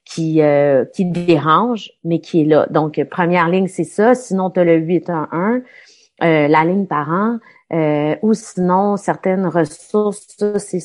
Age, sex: 30-49, female